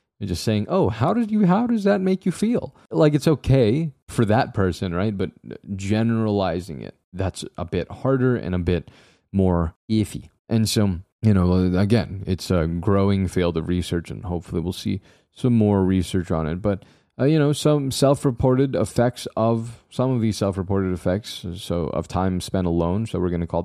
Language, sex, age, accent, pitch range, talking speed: English, male, 30-49, American, 90-115 Hz, 190 wpm